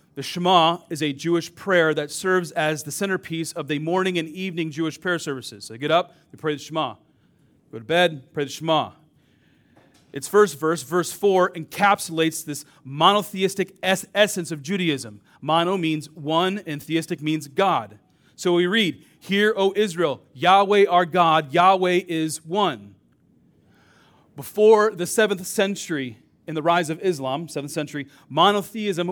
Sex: male